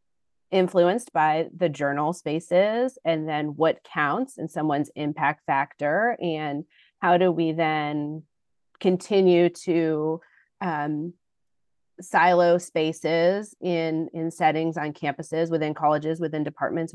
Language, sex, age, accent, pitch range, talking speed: English, female, 30-49, American, 150-175 Hz, 115 wpm